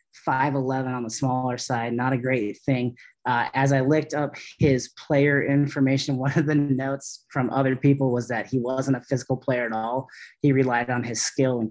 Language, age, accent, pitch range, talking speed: English, 30-49, American, 130-155 Hz, 200 wpm